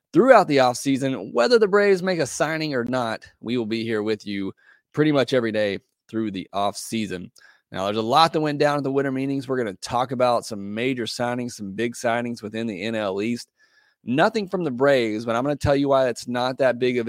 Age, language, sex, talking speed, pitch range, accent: 30-49, English, male, 230 wpm, 105-135 Hz, American